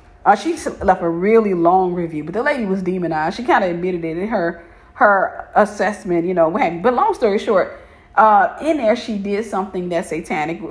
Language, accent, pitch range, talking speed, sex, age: English, American, 170-210 Hz, 205 wpm, female, 40-59